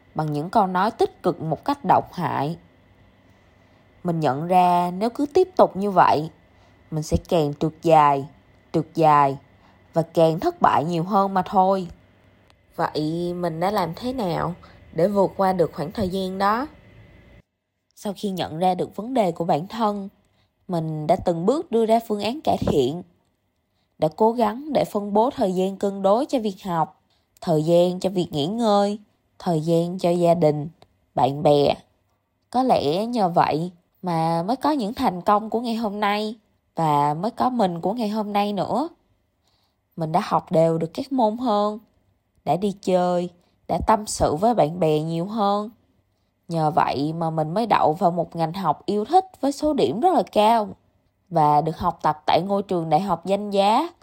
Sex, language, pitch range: female, Vietnamese, 150-210 Hz